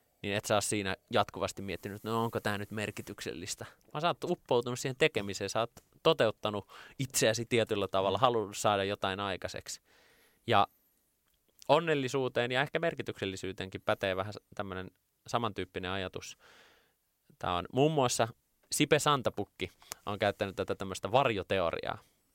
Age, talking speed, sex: 20-39, 125 wpm, male